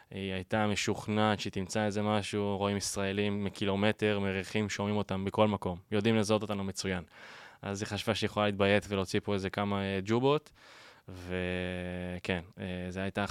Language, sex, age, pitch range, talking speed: Hebrew, male, 10-29, 95-110 Hz, 150 wpm